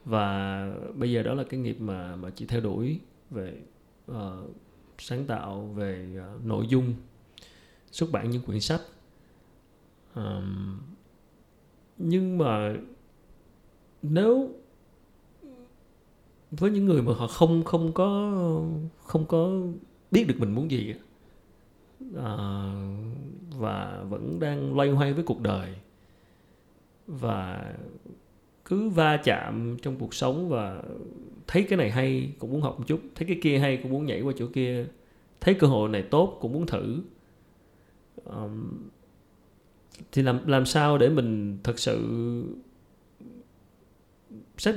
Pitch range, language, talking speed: 105-160 Hz, Vietnamese, 125 wpm